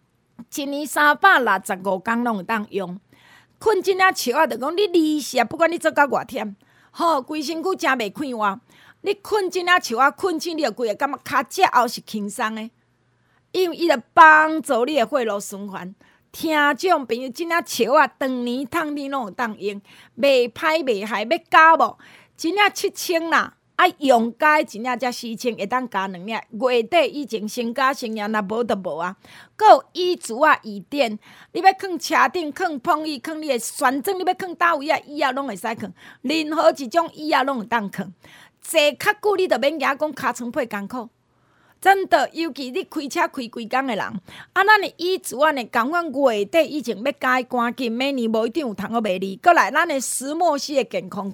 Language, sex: Chinese, female